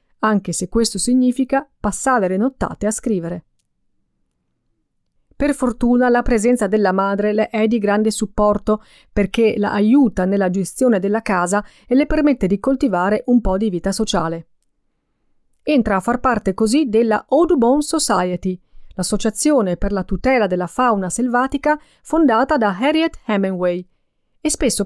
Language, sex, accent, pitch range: Italian, female, native, 195-260 Hz